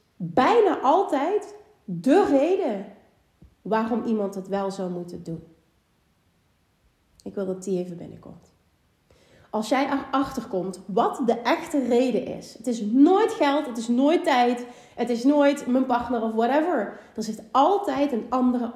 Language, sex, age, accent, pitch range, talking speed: Dutch, female, 30-49, Dutch, 220-290 Hz, 145 wpm